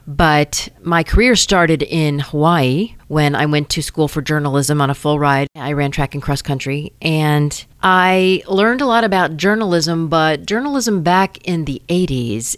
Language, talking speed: English, 170 wpm